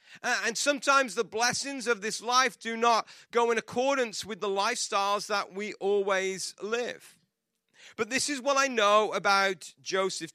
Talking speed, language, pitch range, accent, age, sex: 155 wpm, English, 160-215 Hz, British, 30-49, male